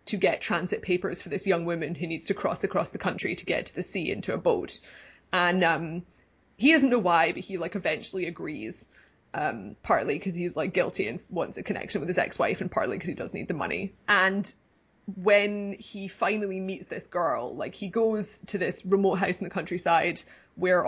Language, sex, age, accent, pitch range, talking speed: English, female, 20-39, British, 175-195 Hz, 210 wpm